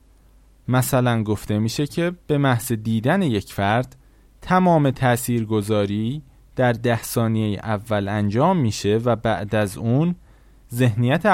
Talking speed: 115 wpm